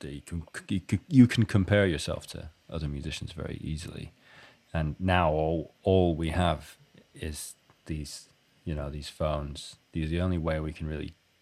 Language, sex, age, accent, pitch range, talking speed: English, male, 30-49, British, 80-95 Hz, 170 wpm